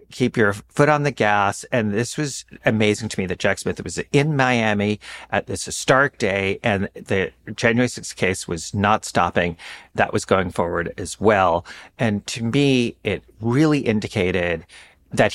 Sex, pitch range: male, 85-115 Hz